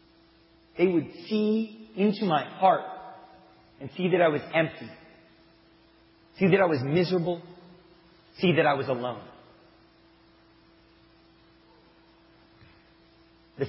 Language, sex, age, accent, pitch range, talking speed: English, male, 40-59, American, 150-180 Hz, 100 wpm